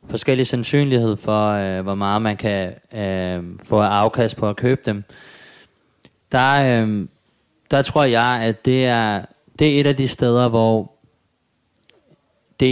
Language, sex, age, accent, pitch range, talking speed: Danish, male, 20-39, native, 100-125 Hz, 145 wpm